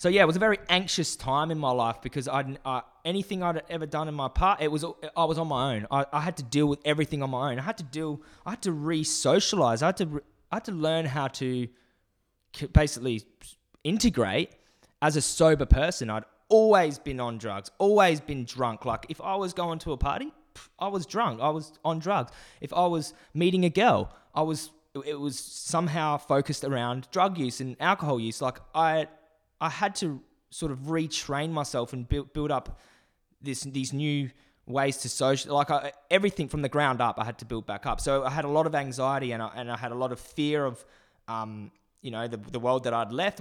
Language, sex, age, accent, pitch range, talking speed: English, male, 20-39, Australian, 125-160 Hz, 220 wpm